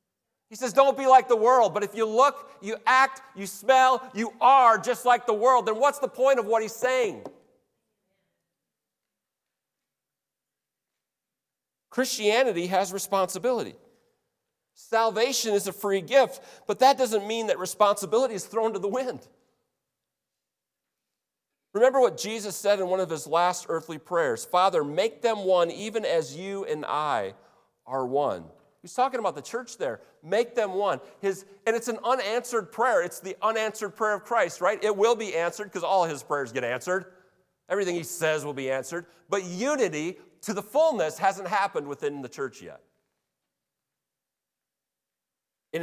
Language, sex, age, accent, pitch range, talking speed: English, male, 40-59, American, 175-235 Hz, 155 wpm